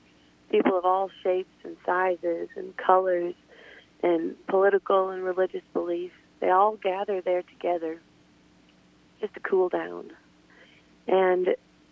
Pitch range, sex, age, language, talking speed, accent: 165-200 Hz, female, 40-59, English, 115 wpm, American